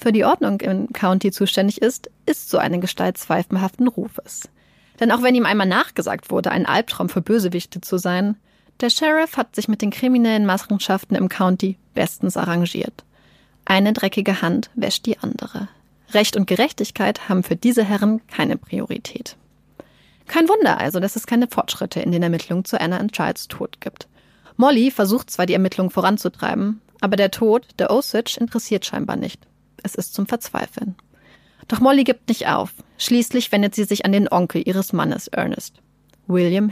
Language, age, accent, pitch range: German, 30-49, German, 195-235 Hz